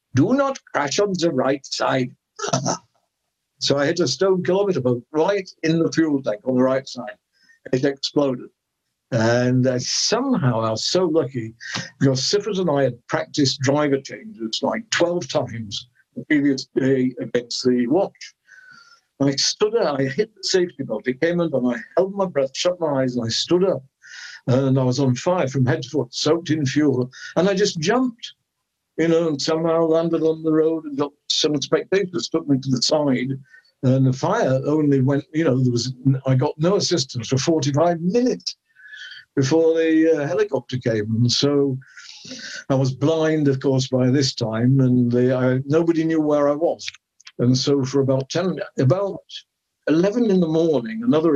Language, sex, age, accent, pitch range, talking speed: English, male, 60-79, British, 130-165 Hz, 180 wpm